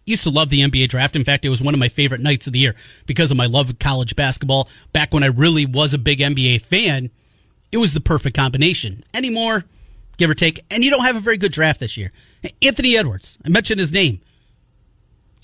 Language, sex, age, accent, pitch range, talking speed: English, male, 30-49, American, 125-170 Hz, 235 wpm